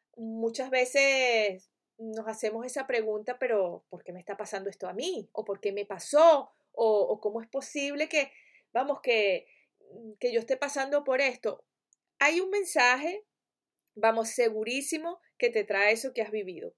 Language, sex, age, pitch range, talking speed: Spanish, female, 30-49, 220-280 Hz, 155 wpm